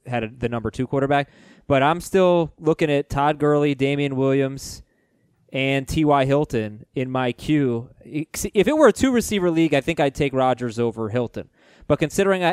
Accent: American